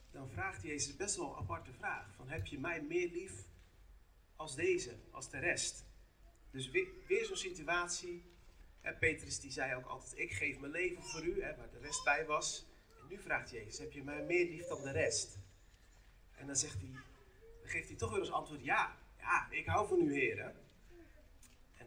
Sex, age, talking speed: male, 40-59, 200 wpm